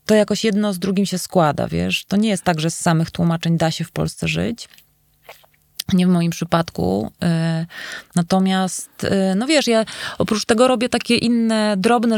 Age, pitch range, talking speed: 20-39, 165-205 Hz, 170 wpm